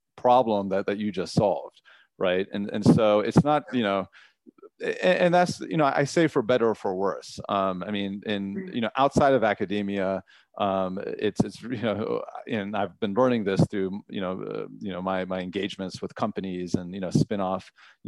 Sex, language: male, English